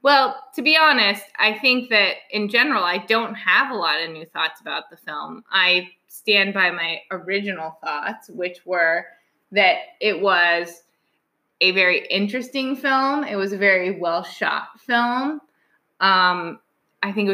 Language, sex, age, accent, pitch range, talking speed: English, female, 20-39, American, 180-230 Hz, 155 wpm